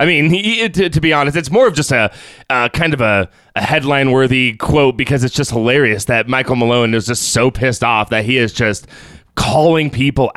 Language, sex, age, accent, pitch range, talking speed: English, male, 20-39, American, 115-155 Hz, 215 wpm